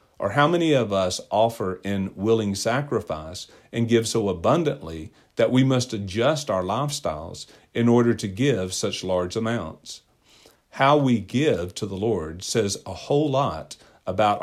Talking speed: 155 wpm